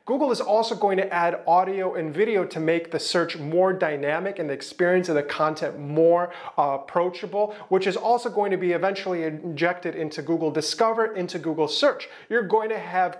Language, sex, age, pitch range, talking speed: English, male, 30-49, 165-205 Hz, 190 wpm